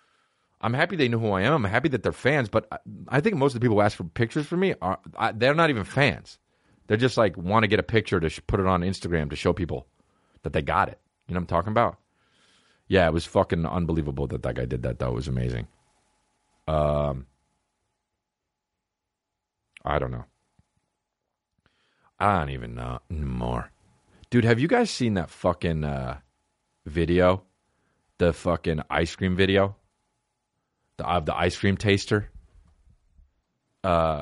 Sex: male